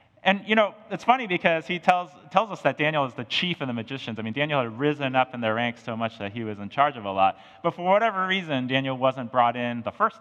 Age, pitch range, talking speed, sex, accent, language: 30-49, 115-150 Hz, 275 wpm, male, American, English